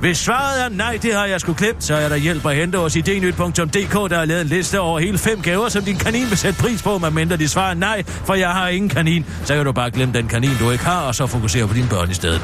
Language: Danish